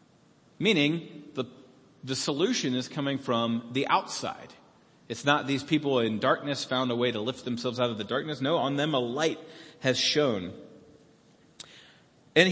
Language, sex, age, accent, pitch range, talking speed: English, male, 40-59, American, 125-185 Hz, 160 wpm